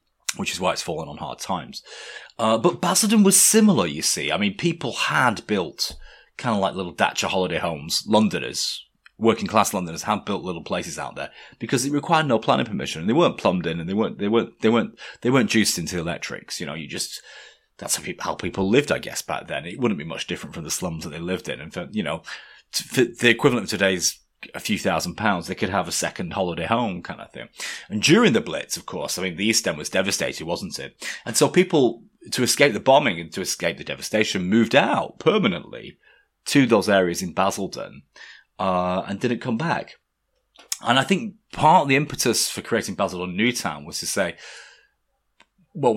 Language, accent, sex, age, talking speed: English, British, male, 30-49, 220 wpm